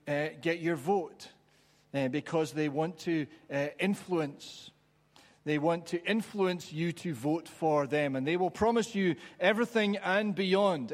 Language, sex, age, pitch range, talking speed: English, male, 40-59, 145-180 Hz, 155 wpm